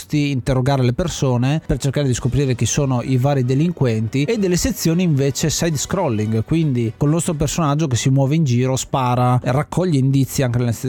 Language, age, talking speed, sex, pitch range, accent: Italian, 30-49, 185 wpm, male, 125-160 Hz, native